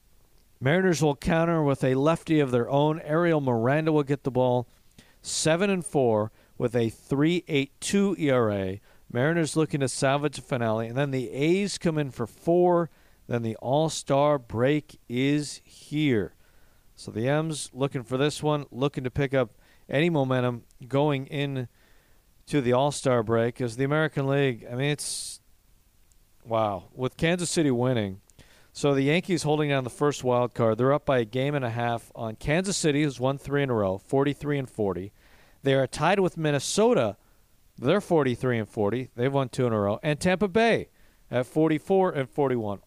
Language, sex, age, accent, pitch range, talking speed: English, male, 50-69, American, 120-155 Hz, 170 wpm